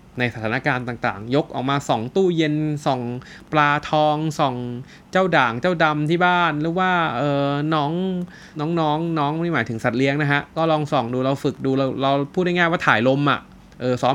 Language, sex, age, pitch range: Thai, male, 20-39, 125-160 Hz